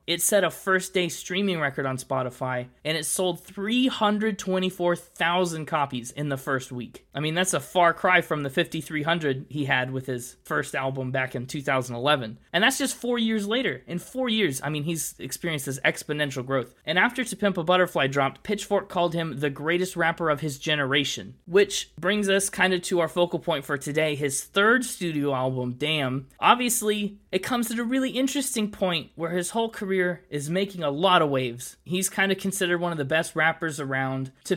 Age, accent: 20-39, American